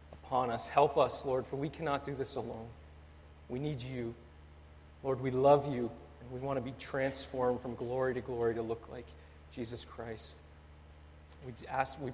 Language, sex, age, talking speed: English, male, 30-49, 175 wpm